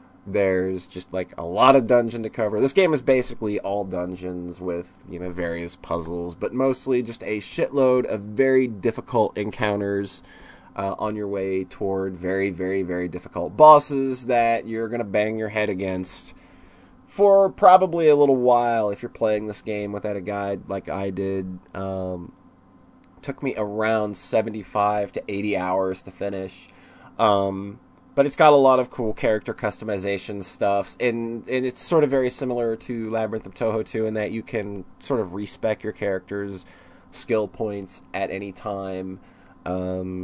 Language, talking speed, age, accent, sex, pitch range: English, 165 wpm, 20-39, American, male, 95-120 Hz